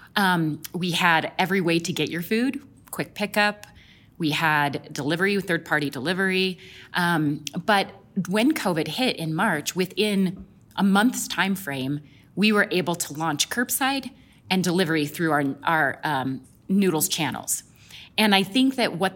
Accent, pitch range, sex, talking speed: American, 150-195 Hz, female, 145 wpm